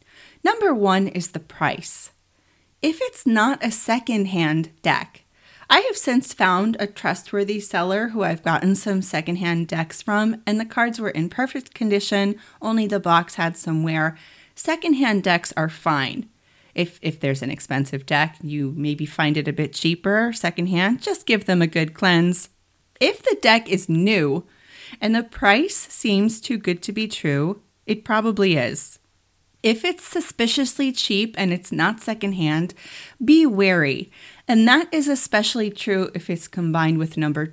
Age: 30-49